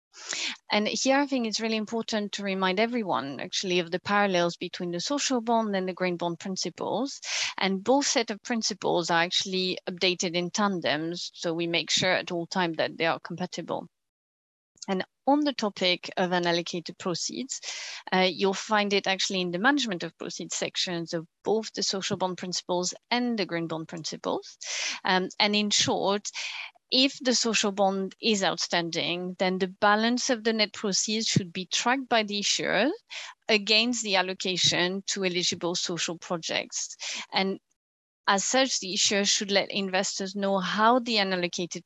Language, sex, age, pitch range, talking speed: English, female, 30-49, 175-215 Hz, 165 wpm